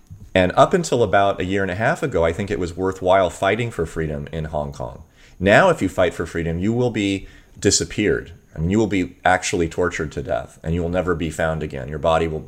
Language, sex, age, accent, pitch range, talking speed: English, male, 30-49, American, 80-95 Hz, 240 wpm